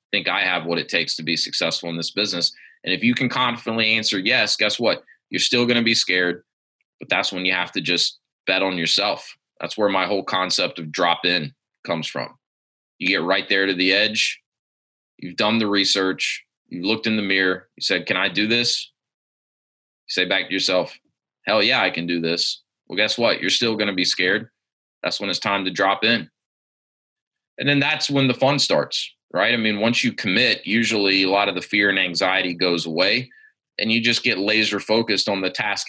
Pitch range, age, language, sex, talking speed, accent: 95-115 Hz, 20-39, English, male, 215 wpm, American